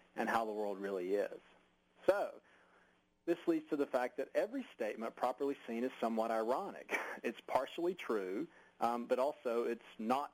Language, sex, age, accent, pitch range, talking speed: English, male, 40-59, American, 115-135 Hz, 165 wpm